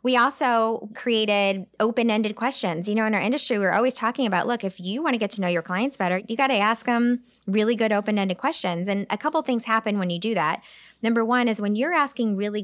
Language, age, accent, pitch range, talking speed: English, 10-29, American, 185-240 Hz, 235 wpm